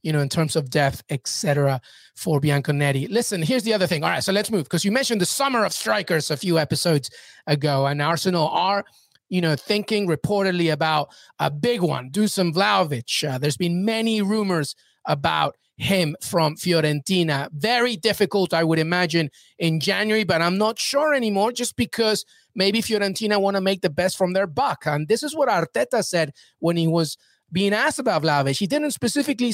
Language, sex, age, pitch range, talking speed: English, male, 30-49, 150-210 Hz, 185 wpm